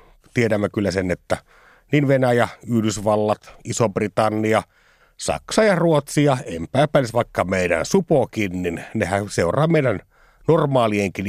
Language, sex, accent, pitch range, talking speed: Finnish, male, native, 95-130 Hz, 110 wpm